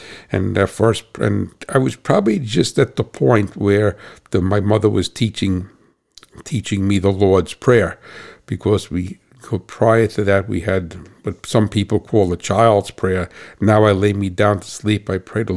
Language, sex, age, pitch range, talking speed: English, male, 60-79, 95-110 Hz, 180 wpm